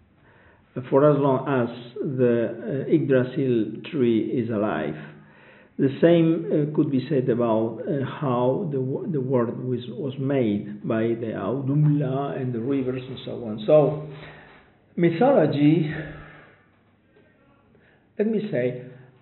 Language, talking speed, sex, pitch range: Bulgarian, 130 wpm, male, 125-155 Hz